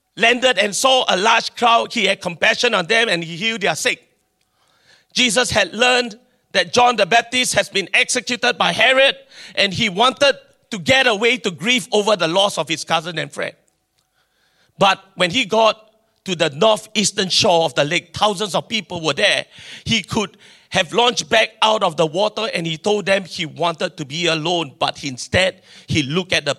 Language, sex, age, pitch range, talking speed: English, male, 40-59, 160-215 Hz, 190 wpm